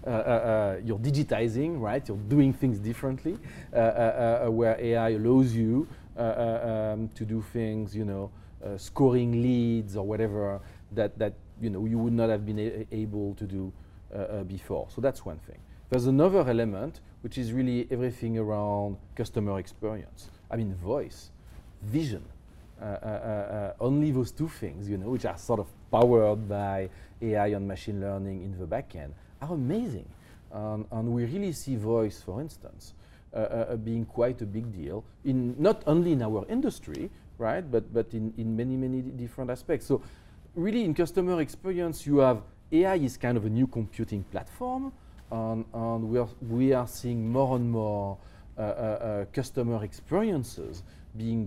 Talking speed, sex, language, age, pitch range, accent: 175 wpm, male, English, 40-59, 100-125 Hz, French